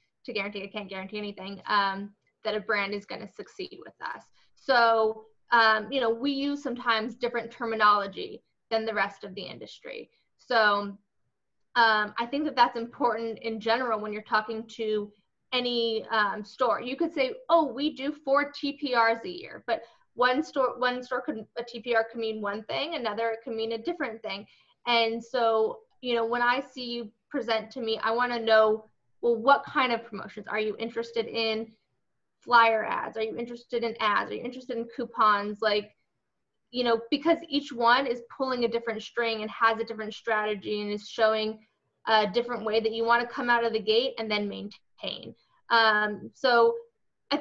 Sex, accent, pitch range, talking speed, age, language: female, American, 220-255 Hz, 185 wpm, 20-39, English